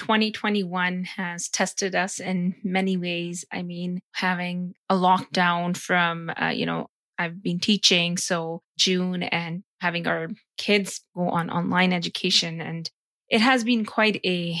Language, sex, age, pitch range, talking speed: English, female, 20-39, 180-200 Hz, 145 wpm